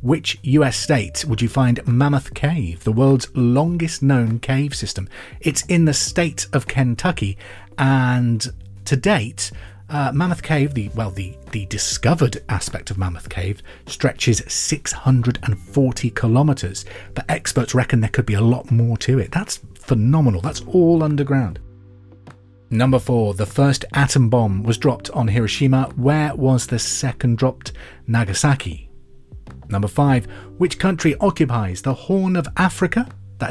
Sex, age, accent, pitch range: male, 40-59, British, 100-140 Hz